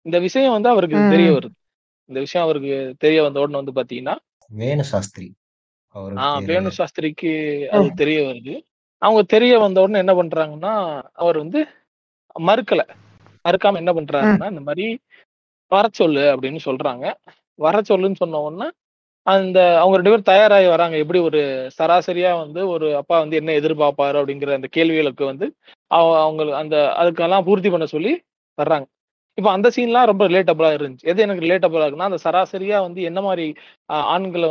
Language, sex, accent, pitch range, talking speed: Tamil, male, native, 150-190 Hz, 145 wpm